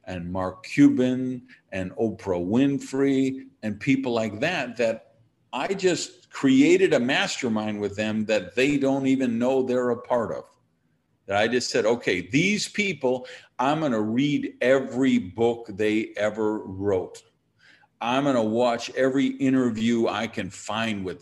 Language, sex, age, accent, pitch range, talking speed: English, male, 50-69, American, 110-160 Hz, 145 wpm